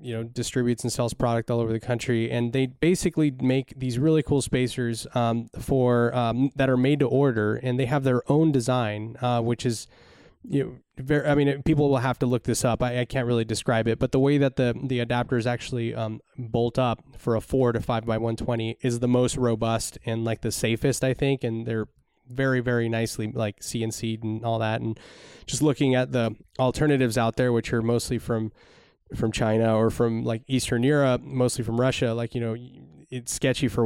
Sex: male